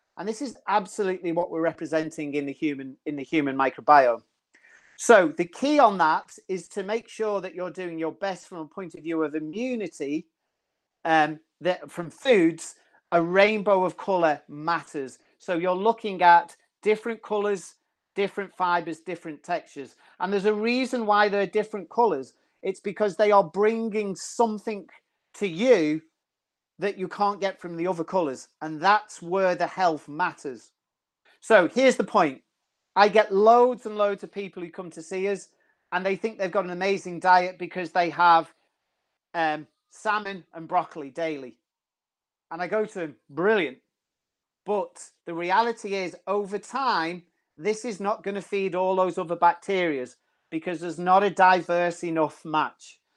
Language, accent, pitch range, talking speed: English, British, 165-205 Hz, 165 wpm